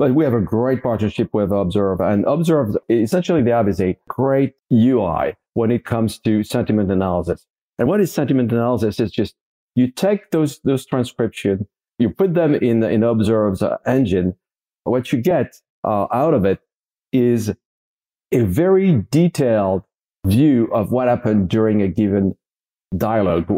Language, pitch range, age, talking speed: English, 105-135 Hz, 50-69, 155 wpm